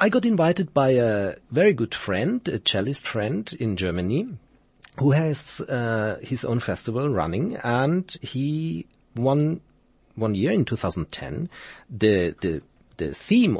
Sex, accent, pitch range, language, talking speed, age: male, German, 115-175 Hz, English, 135 wpm, 40-59